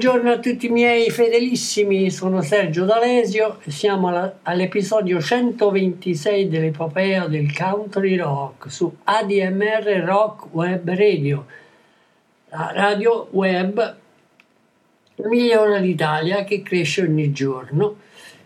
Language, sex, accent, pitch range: Italian, male, native, 155-205 Hz